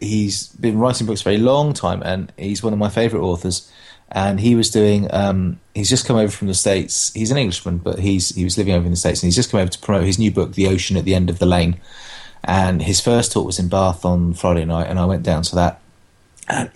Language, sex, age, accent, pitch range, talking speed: English, male, 30-49, British, 90-110 Hz, 270 wpm